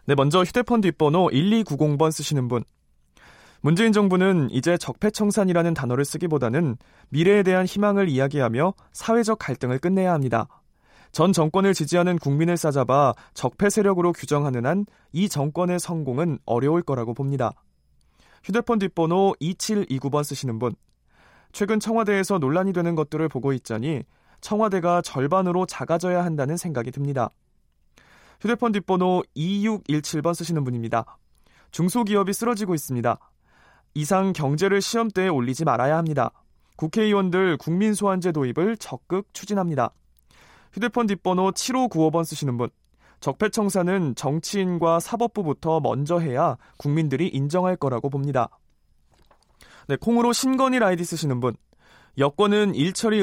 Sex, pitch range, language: male, 135-195 Hz, Korean